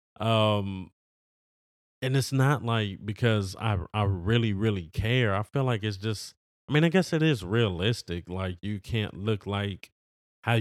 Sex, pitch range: male, 95-120 Hz